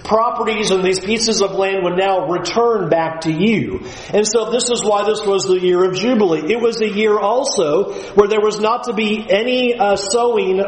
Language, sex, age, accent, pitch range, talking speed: English, male, 40-59, American, 175-215 Hz, 210 wpm